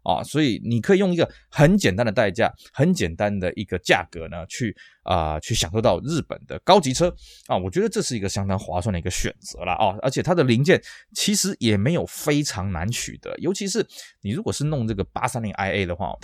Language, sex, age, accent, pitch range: Chinese, male, 20-39, native, 95-145 Hz